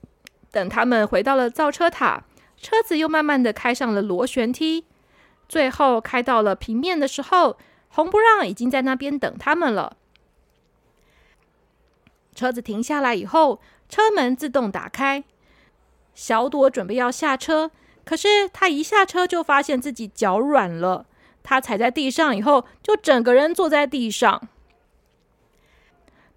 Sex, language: female, Chinese